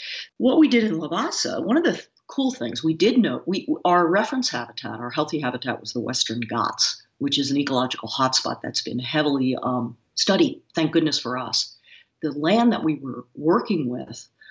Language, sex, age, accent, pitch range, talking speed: English, female, 50-69, American, 135-170 Hz, 190 wpm